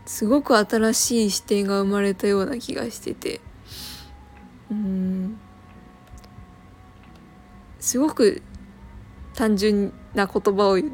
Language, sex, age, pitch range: Japanese, female, 20-39, 195-260 Hz